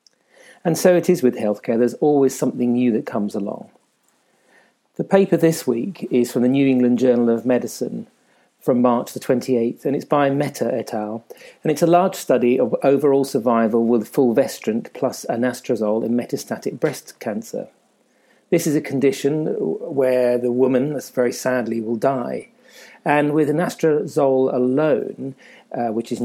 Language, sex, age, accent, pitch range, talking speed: English, male, 40-59, British, 120-145 Hz, 160 wpm